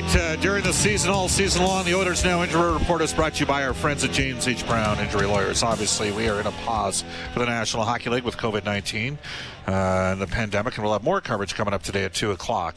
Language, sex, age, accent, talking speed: English, male, 50-69, American, 250 wpm